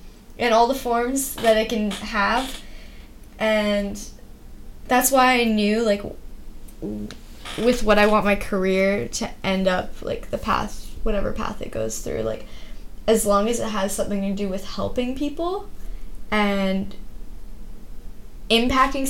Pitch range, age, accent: 195-230 Hz, 10-29, American